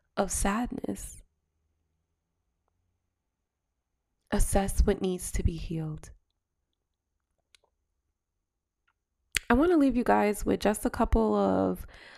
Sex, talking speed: female, 95 wpm